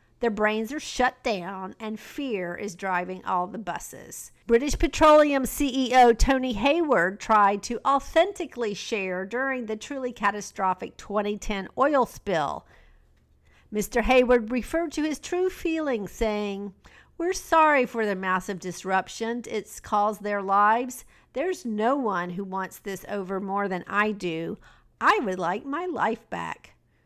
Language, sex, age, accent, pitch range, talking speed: English, female, 50-69, American, 200-255 Hz, 140 wpm